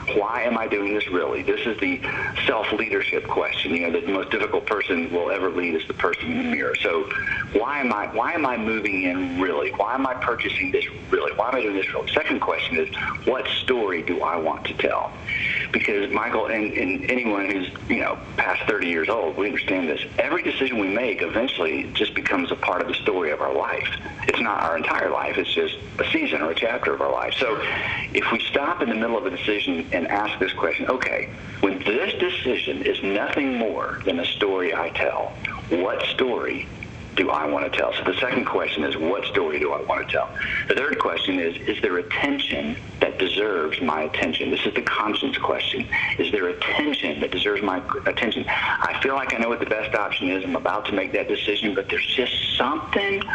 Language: English